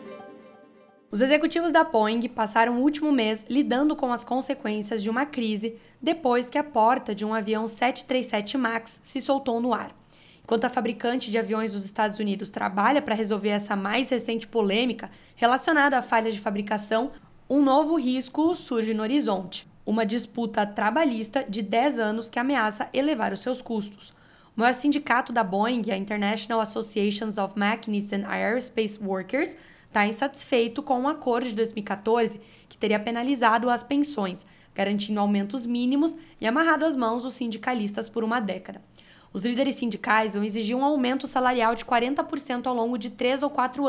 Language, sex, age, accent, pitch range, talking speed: Portuguese, female, 10-29, Brazilian, 215-260 Hz, 165 wpm